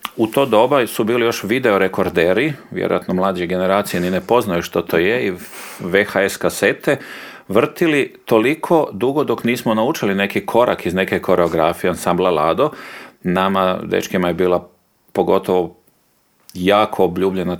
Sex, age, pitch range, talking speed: male, 40-59, 95-130 Hz, 135 wpm